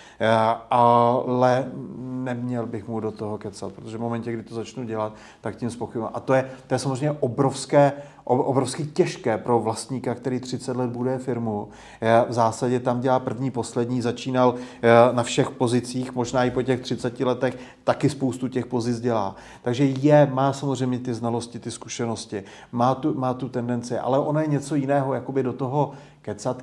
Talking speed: 180 wpm